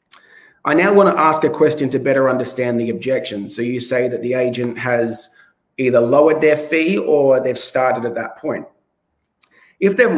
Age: 30-49